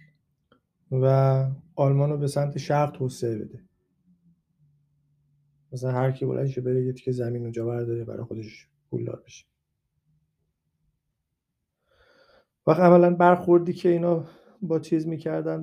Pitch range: 130-170 Hz